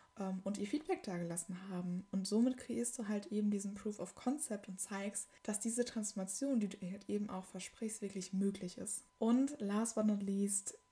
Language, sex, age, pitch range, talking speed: German, female, 10-29, 195-220 Hz, 190 wpm